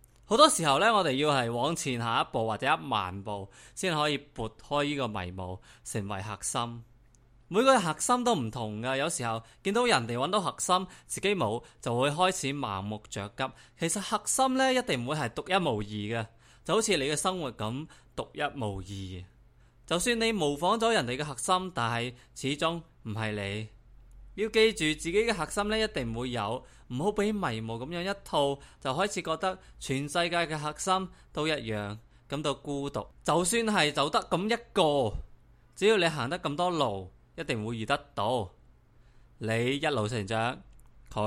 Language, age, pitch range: Chinese, 20-39, 115-160 Hz